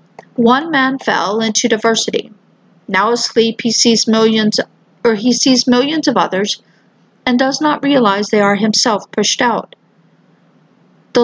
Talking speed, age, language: 140 wpm, 50-69, English